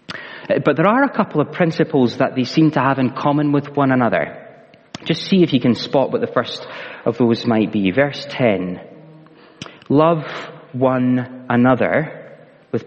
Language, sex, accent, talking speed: English, male, British, 170 wpm